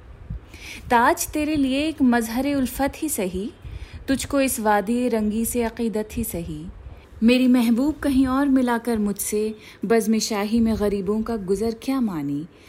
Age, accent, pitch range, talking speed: 30-49, native, 190-240 Hz, 140 wpm